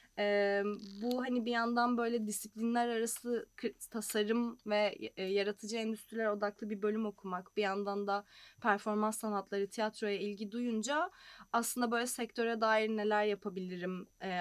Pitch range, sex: 200-230 Hz, female